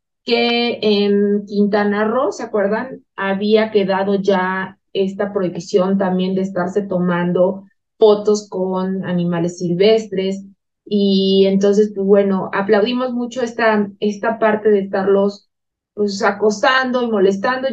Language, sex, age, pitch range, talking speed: Spanish, female, 20-39, 195-230 Hz, 115 wpm